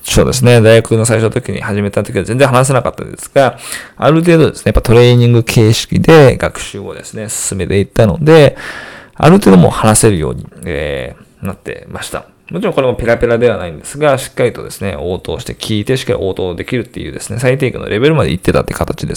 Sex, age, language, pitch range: male, 20-39, Japanese, 105-160 Hz